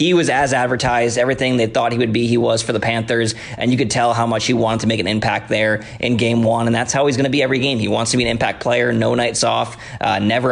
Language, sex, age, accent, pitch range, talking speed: English, male, 20-39, American, 115-125 Hz, 295 wpm